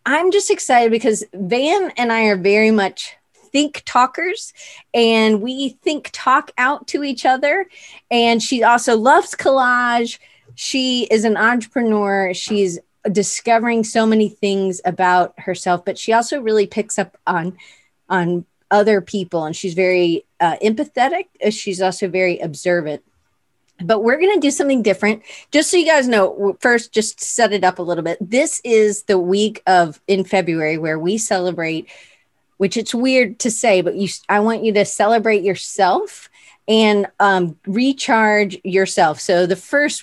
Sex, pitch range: female, 180-240 Hz